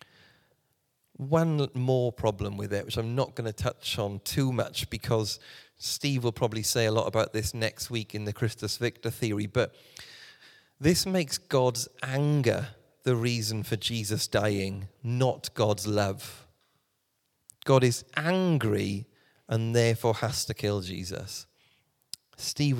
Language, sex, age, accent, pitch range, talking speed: English, male, 30-49, British, 110-140 Hz, 140 wpm